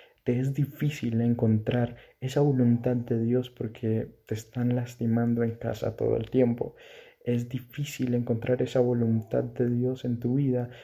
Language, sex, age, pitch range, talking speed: Spanish, male, 20-39, 115-125 Hz, 150 wpm